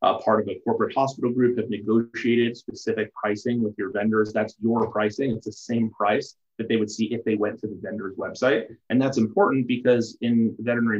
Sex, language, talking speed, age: male, English, 200 wpm, 30-49